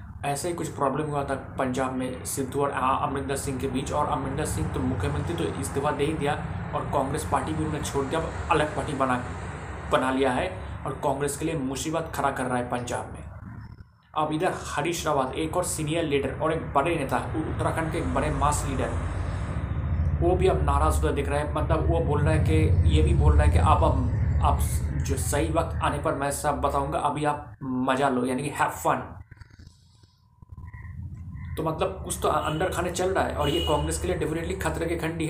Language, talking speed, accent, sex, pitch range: Hindi, 205 wpm, native, male, 100-160 Hz